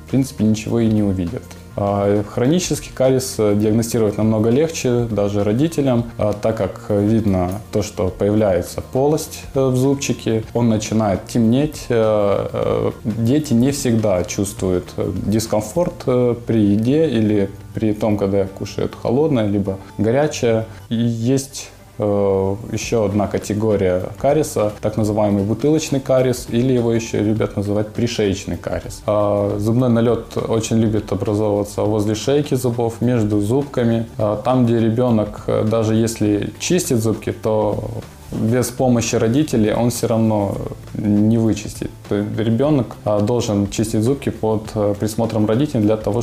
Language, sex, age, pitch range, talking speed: Ukrainian, male, 20-39, 105-120 Hz, 120 wpm